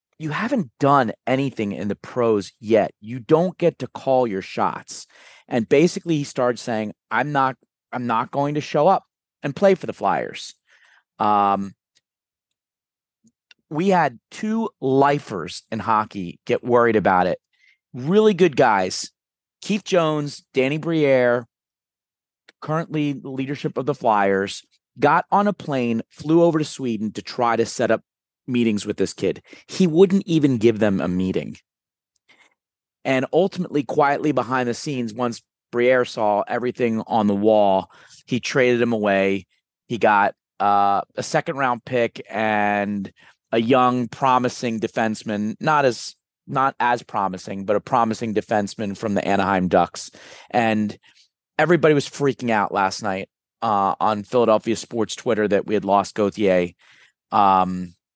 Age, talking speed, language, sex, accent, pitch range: 30-49, 145 wpm, English, male, American, 105-145 Hz